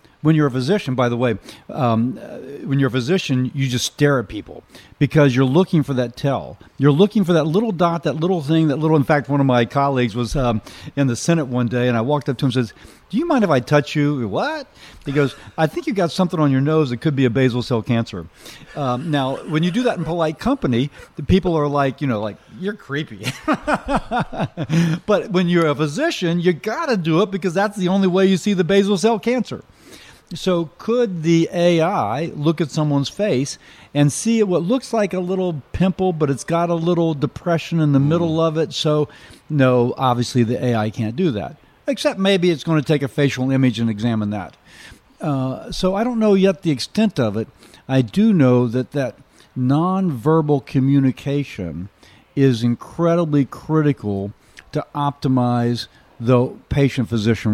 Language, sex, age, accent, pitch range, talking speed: English, male, 40-59, American, 125-175 Hz, 200 wpm